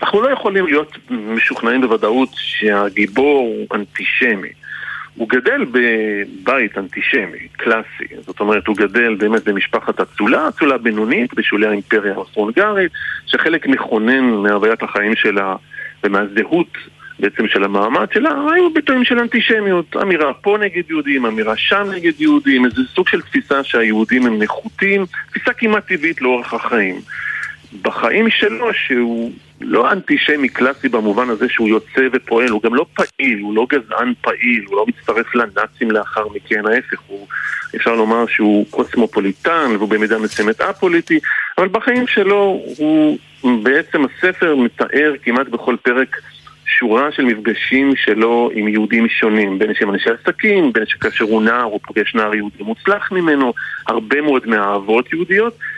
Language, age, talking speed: Hebrew, 40-59, 140 wpm